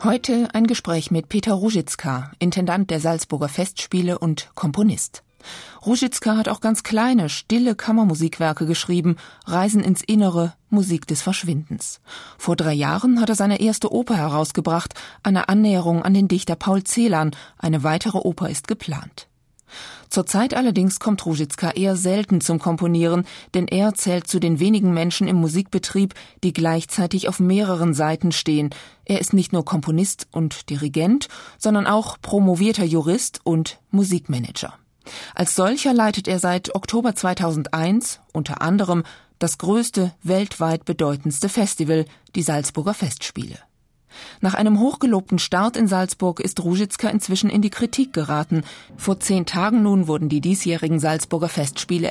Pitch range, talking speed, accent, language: 165-205 Hz, 140 wpm, German, German